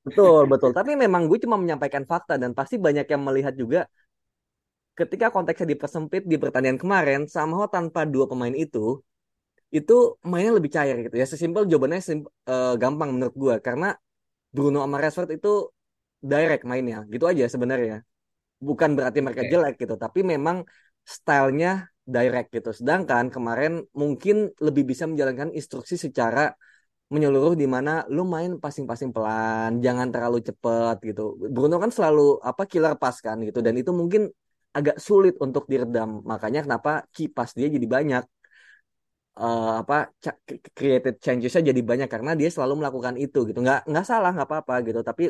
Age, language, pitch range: 20-39, Indonesian, 125-160 Hz